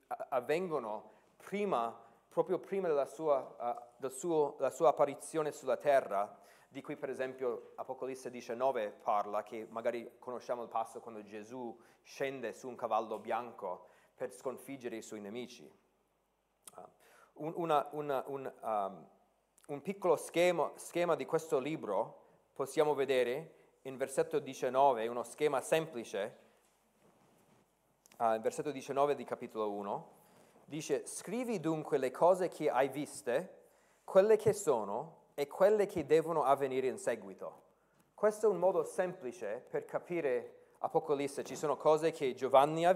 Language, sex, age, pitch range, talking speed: Italian, male, 40-59, 135-195 Hz, 135 wpm